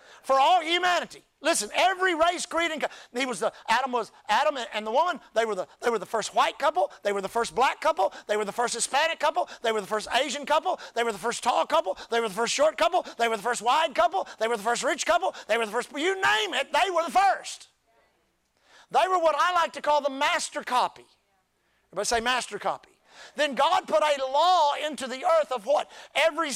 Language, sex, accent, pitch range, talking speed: English, male, American, 235-325 Hz, 220 wpm